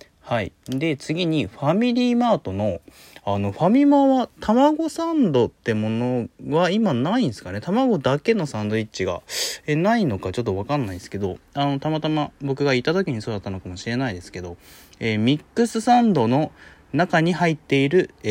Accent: native